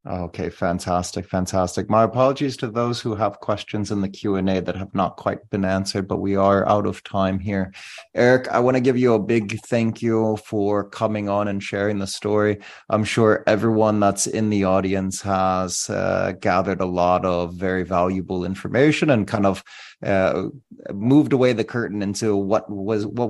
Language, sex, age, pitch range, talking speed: English, male, 30-49, 95-120 Hz, 185 wpm